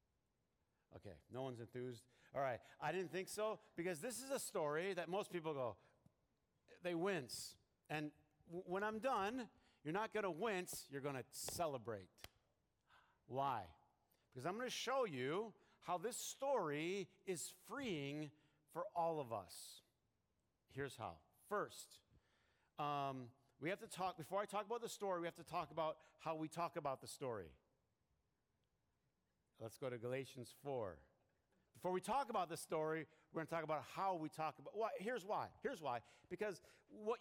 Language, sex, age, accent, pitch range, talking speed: English, male, 50-69, American, 130-190 Hz, 160 wpm